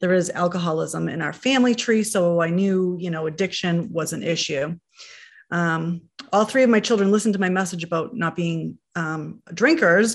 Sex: female